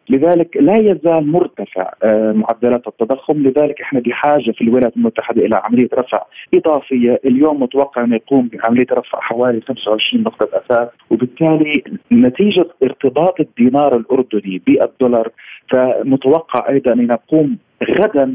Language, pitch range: Arabic, 115-150 Hz